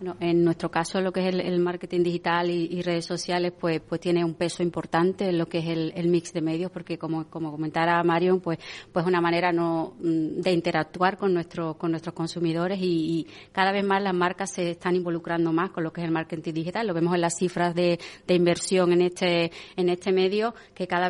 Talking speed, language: 230 wpm, Spanish